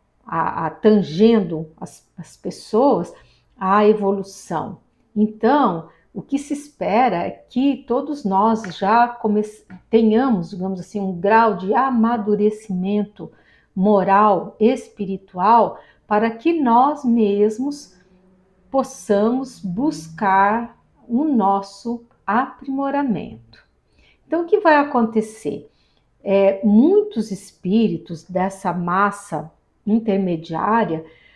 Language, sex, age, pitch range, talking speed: English, female, 50-69, 195-255 Hz, 90 wpm